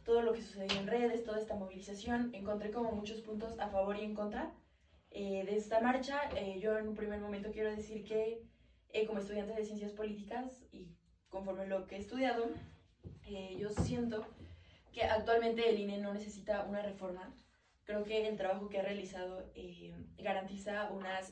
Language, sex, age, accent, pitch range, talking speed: Spanish, female, 20-39, Mexican, 190-220 Hz, 185 wpm